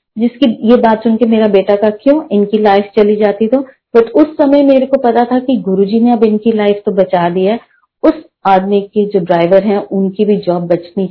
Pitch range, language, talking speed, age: 190-245 Hz, Hindi, 220 wpm, 30-49